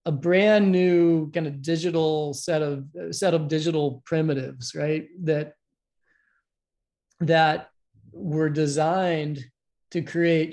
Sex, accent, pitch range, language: male, American, 145-165 Hz, English